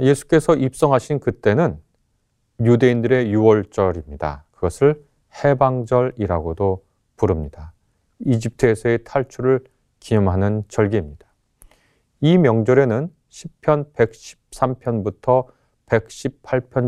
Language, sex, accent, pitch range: Korean, male, native, 100-135 Hz